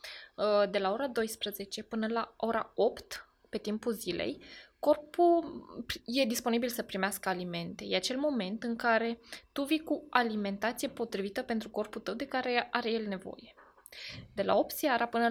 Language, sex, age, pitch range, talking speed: Romanian, female, 20-39, 200-260 Hz, 155 wpm